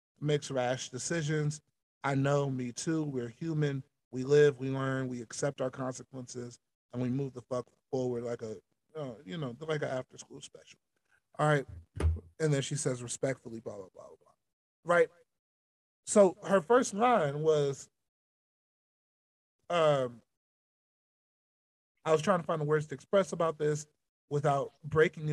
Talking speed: 145 wpm